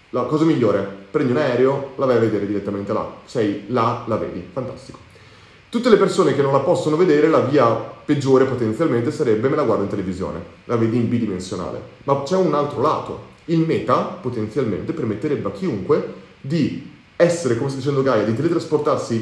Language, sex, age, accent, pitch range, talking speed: Italian, male, 30-49, native, 120-170 Hz, 180 wpm